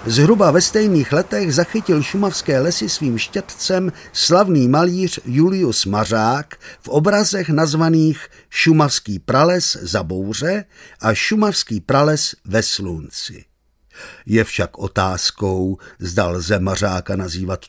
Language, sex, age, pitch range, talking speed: Czech, male, 50-69, 105-160 Hz, 110 wpm